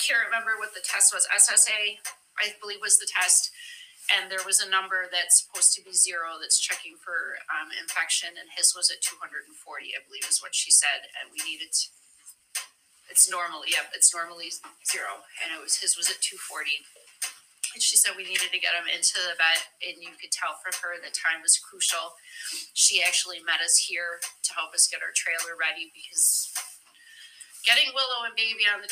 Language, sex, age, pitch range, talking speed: English, female, 30-49, 175-230 Hz, 195 wpm